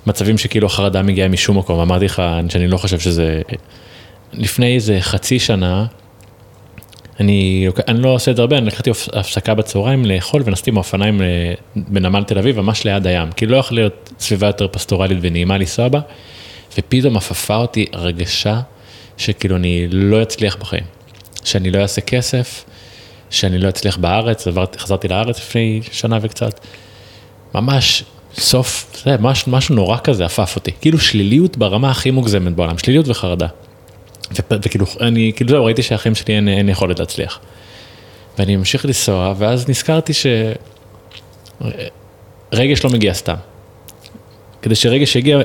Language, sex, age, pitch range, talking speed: Hebrew, male, 20-39, 100-120 Hz, 145 wpm